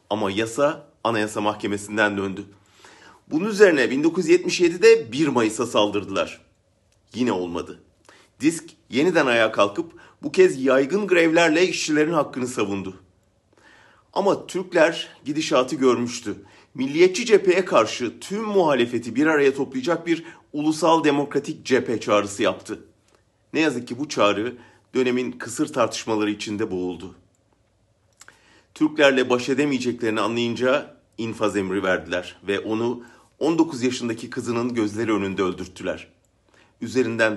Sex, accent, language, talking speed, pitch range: male, Turkish, German, 110 wpm, 105-150 Hz